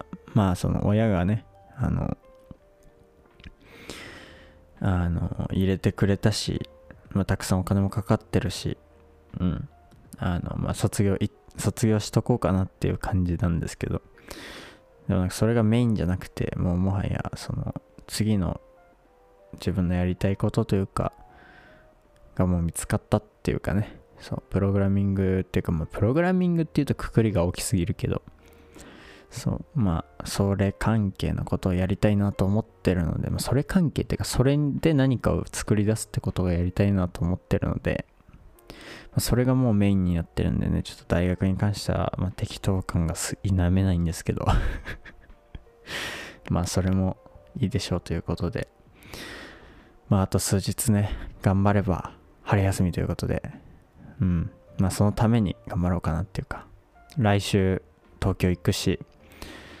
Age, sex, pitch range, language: 20-39, male, 90-105 Hz, Japanese